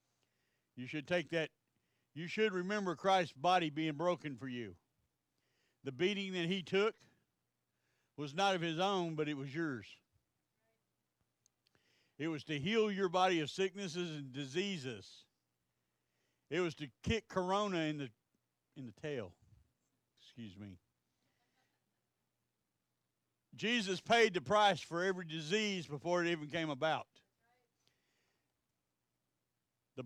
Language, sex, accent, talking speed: English, male, American, 125 wpm